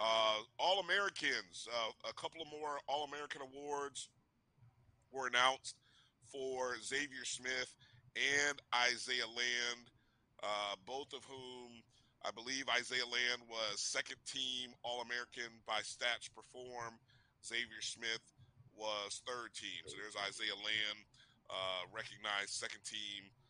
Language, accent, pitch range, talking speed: English, American, 110-125 Hz, 110 wpm